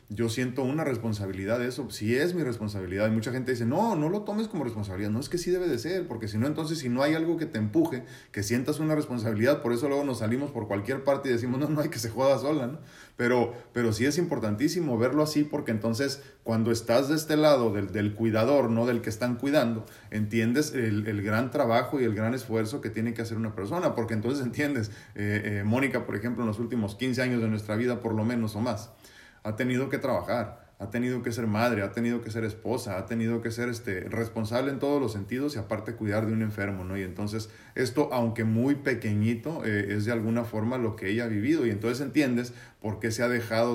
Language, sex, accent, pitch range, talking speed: Spanish, male, Mexican, 110-130 Hz, 235 wpm